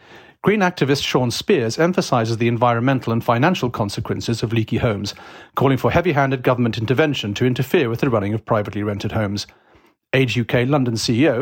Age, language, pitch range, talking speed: 40-59, English, 115-160 Hz, 165 wpm